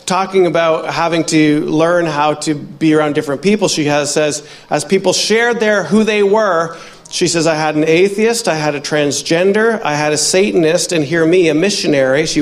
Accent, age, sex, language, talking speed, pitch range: American, 40-59, male, English, 200 wpm, 155-210 Hz